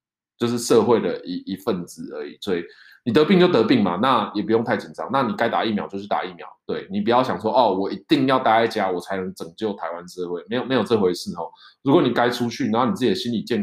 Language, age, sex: Chinese, 20-39, male